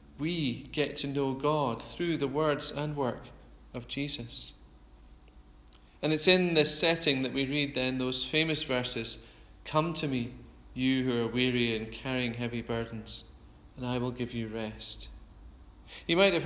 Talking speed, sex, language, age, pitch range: 160 wpm, male, English, 40-59, 125-155 Hz